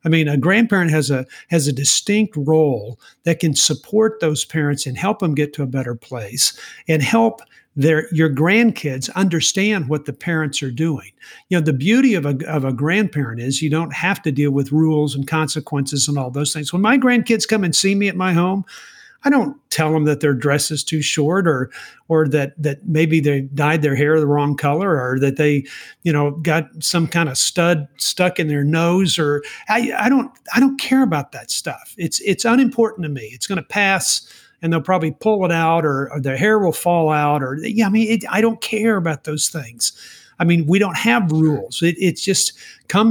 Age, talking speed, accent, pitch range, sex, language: 50-69, 215 wpm, American, 145-185 Hz, male, English